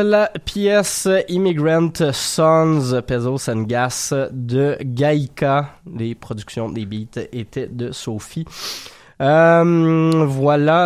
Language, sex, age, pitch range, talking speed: French, male, 20-39, 110-145 Hz, 100 wpm